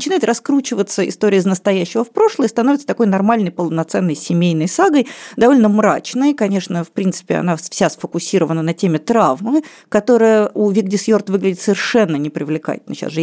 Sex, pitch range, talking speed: female, 170-230 Hz, 145 wpm